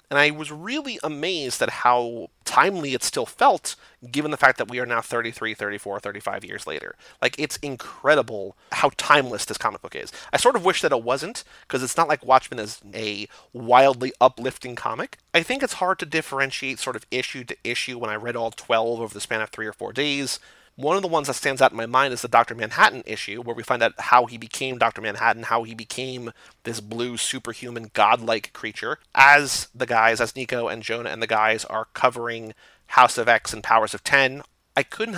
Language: English